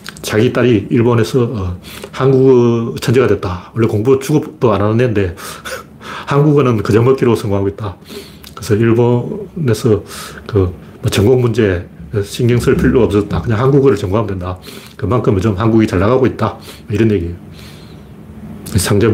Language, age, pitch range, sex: Korean, 40-59, 100-130 Hz, male